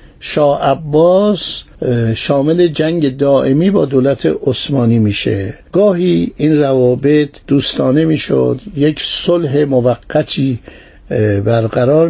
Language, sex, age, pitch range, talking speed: Persian, male, 60-79, 125-155 Hz, 85 wpm